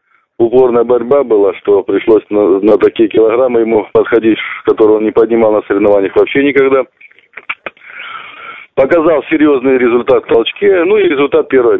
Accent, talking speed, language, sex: native, 140 wpm, Russian, male